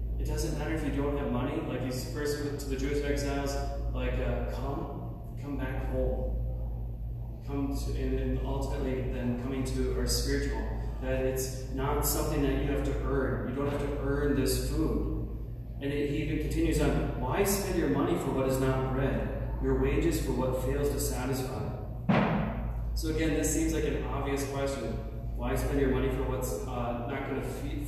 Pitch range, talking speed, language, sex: 120-140 Hz, 180 wpm, English, male